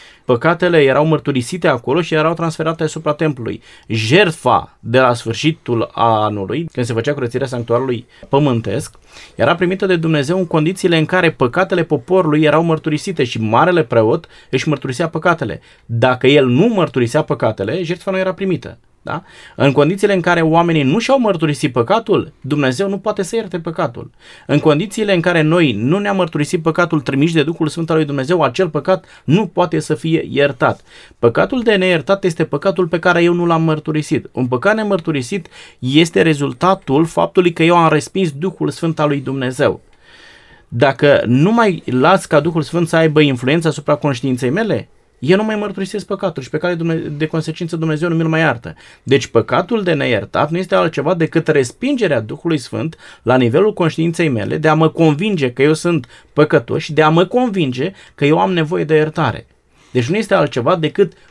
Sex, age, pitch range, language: male, 30-49, 140-180 Hz, Romanian